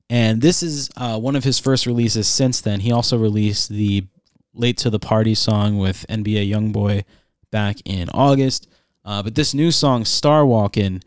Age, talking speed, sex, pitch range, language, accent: 20-39, 175 wpm, male, 100-125 Hz, English, American